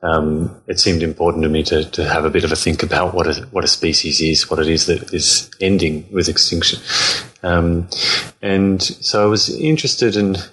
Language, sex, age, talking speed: English, male, 30-49, 205 wpm